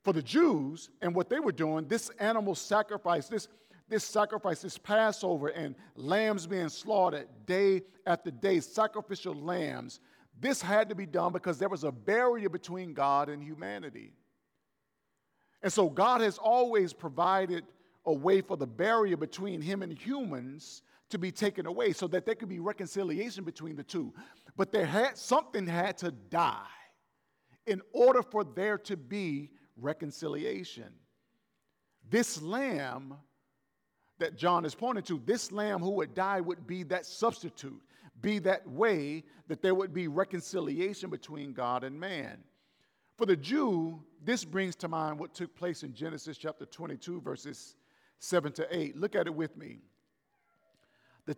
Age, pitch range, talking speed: 50-69, 160-205 Hz, 155 wpm